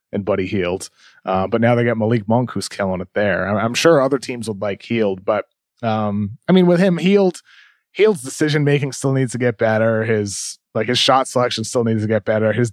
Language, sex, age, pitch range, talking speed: English, male, 30-49, 115-140 Hz, 225 wpm